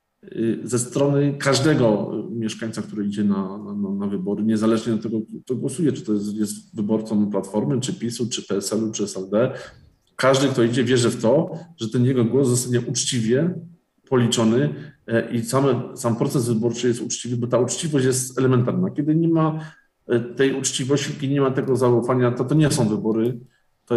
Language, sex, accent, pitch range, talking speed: Polish, male, native, 110-140 Hz, 170 wpm